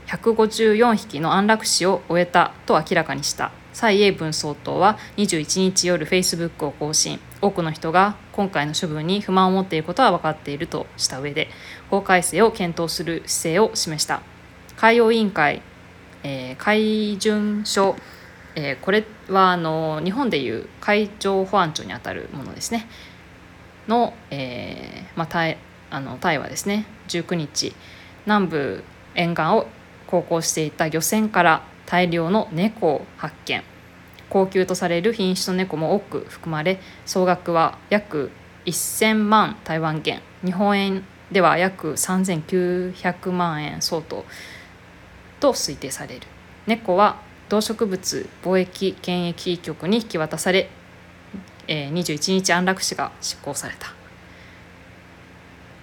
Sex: female